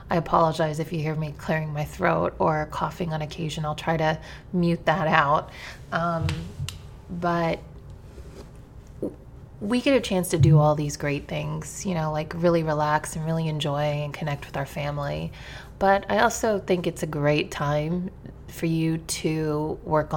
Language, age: English, 30-49